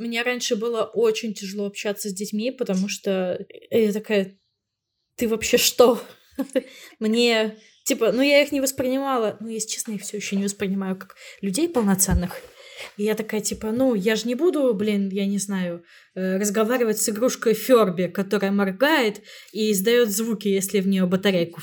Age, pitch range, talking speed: 20-39, 205-255 Hz, 165 wpm